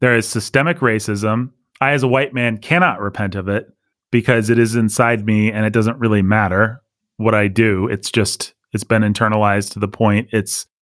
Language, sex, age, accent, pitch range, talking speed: English, male, 30-49, American, 105-125 Hz, 195 wpm